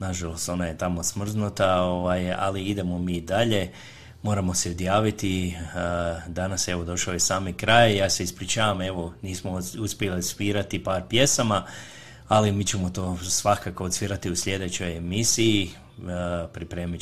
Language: Croatian